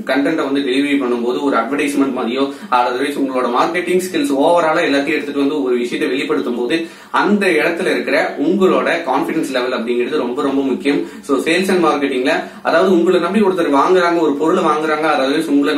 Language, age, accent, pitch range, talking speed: Tamil, 20-39, native, 140-190 Hz, 130 wpm